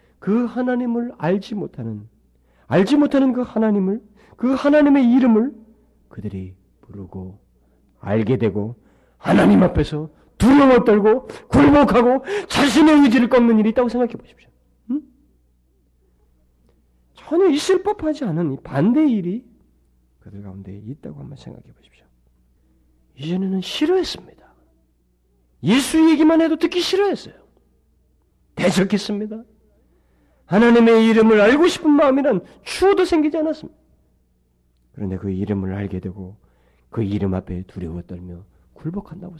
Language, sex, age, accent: Korean, male, 40-59, native